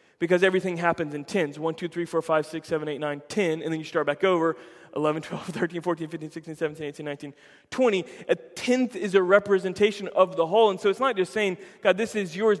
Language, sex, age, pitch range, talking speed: English, male, 20-39, 170-220 Hz, 235 wpm